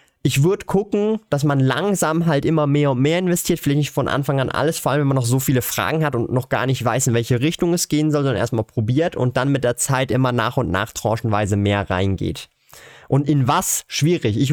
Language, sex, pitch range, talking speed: German, male, 120-150 Hz, 240 wpm